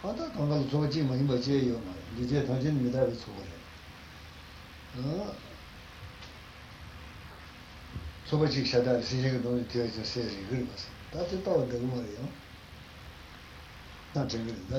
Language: Italian